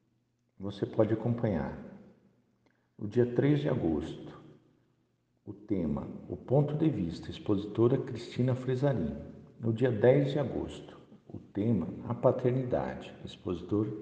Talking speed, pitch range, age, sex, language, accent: 115 wpm, 95-125 Hz, 60-79, male, Portuguese, Brazilian